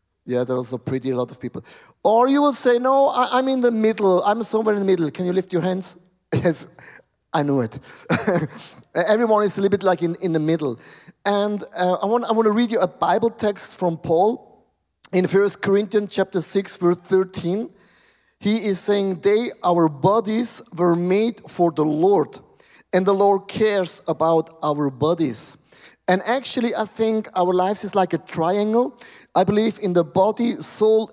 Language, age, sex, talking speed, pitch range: English, 30-49, male, 185 wpm, 180-220 Hz